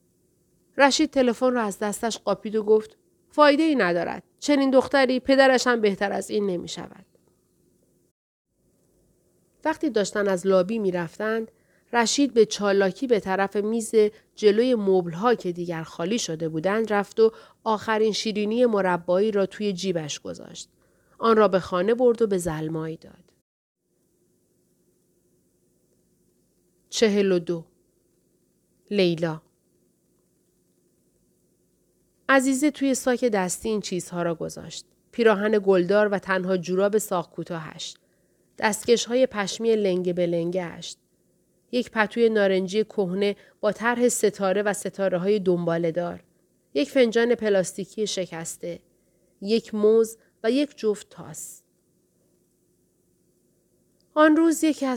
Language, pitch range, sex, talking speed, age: Persian, 185-230 Hz, female, 115 wpm, 40-59